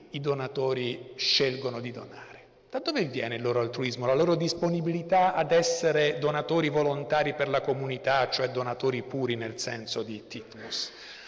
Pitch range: 120-165 Hz